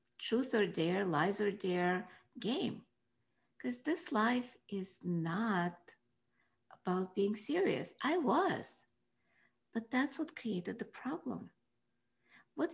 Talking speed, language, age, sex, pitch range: 115 wpm, English, 50-69, female, 190-225 Hz